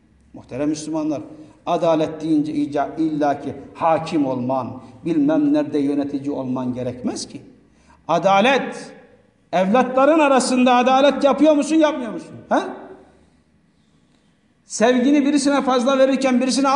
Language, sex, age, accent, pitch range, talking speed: Turkish, male, 60-79, native, 170-265 Hz, 95 wpm